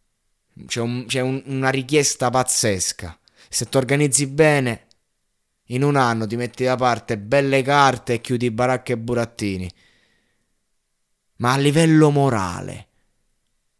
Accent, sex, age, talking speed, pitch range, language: native, male, 20-39, 115 wpm, 100-130 Hz, Italian